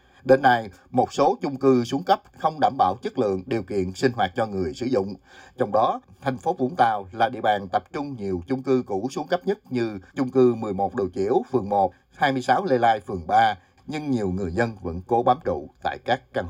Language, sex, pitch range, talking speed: Vietnamese, male, 95-130 Hz, 230 wpm